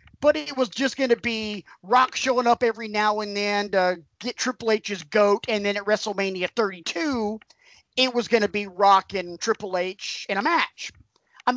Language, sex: English, male